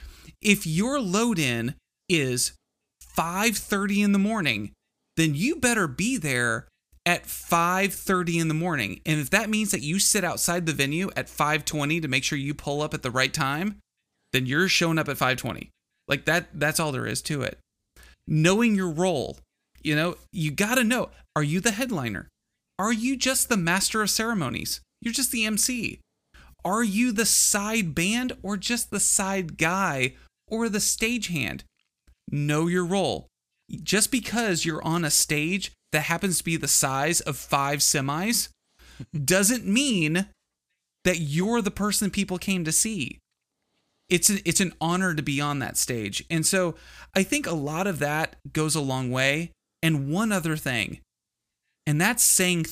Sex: male